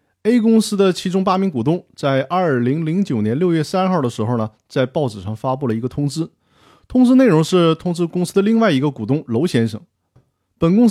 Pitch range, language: 125-185 Hz, Chinese